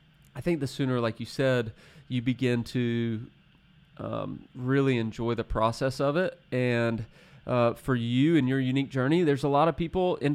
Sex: male